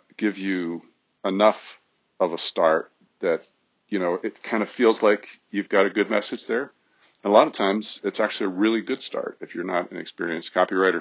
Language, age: English, 40-59